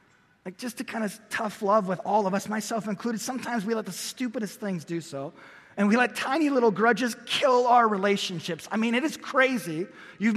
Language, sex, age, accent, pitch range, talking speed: English, male, 30-49, American, 210-255 Hz, 210 wpm